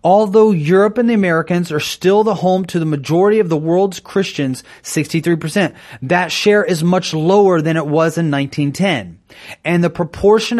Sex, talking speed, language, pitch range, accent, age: male, 170 wpm, English, 145-195 Hz, American, 30-49